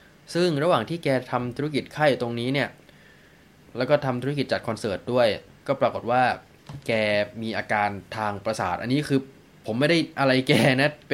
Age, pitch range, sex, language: 20-39, 115-150 Hz, male, Thai